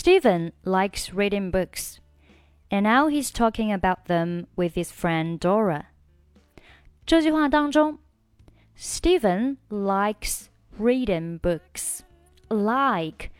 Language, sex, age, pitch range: Chinese, female, 20-39, 160-225 Hz